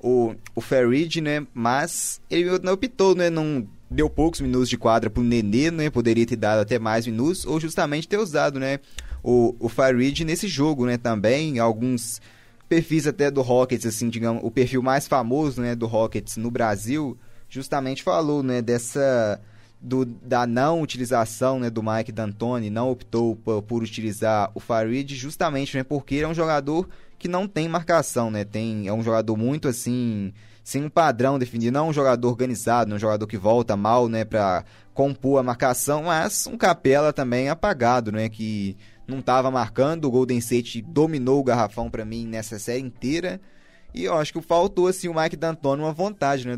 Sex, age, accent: male, 20-39, Brazilian